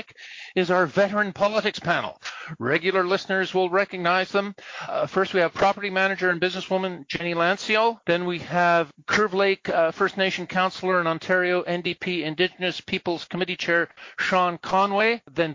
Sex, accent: male, American